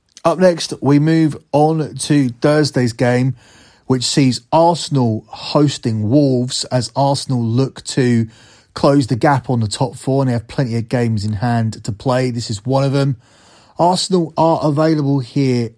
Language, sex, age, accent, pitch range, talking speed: English, male, 30-49, British, 115-140 Hz, 165 wpm